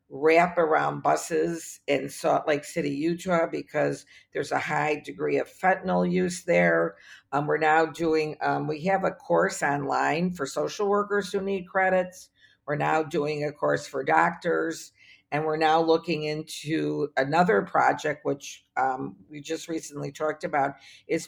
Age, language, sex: 50-69, English, female